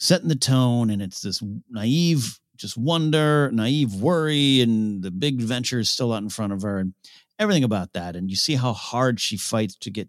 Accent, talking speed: American, 210 wpm